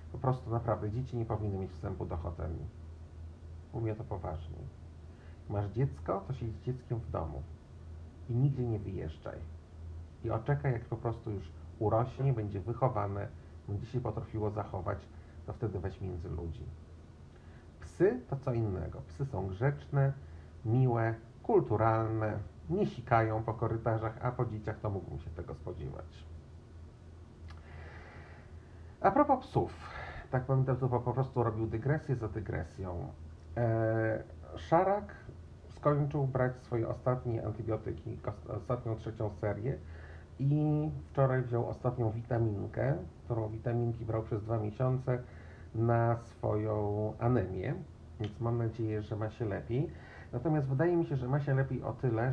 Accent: native